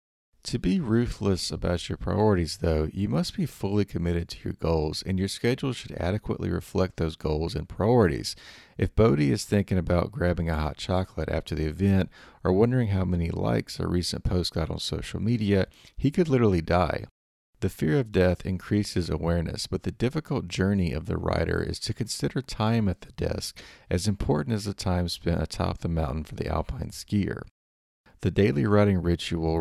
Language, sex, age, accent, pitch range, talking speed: English, male, 40-59, American, 85-105 Hz, 180 wpm